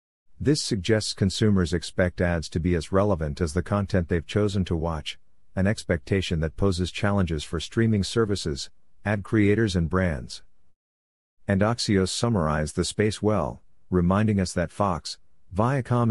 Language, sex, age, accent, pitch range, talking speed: English, male, 50-69, American, 85-105 Hz, 145 wpm